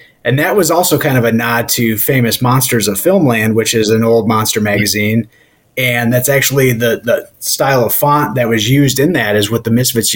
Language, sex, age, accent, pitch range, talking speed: English, male, 30-49, American, 115-140 Hz, 215 wpm